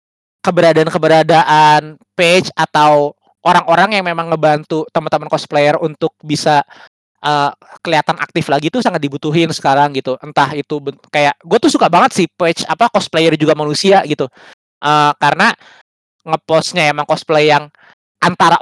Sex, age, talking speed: male, 20-39, 135 wpm